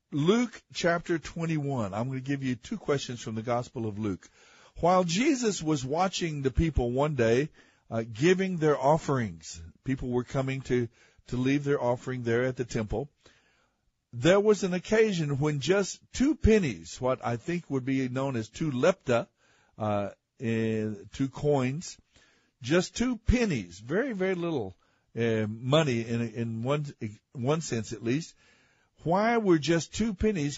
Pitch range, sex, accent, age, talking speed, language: 120-165 Hz, male, American, 60-79, 155 wpm, English